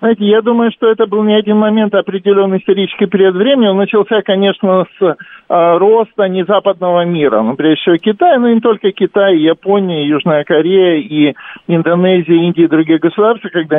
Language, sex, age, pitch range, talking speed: Russian, male, 50-69, 165-200 Hz, 175 wpm